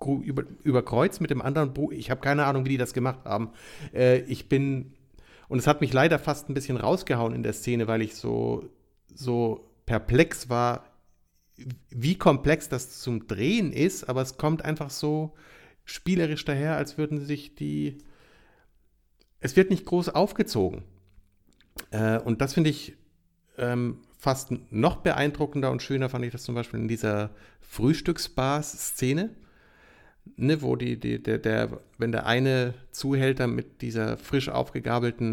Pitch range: 115-145 Hz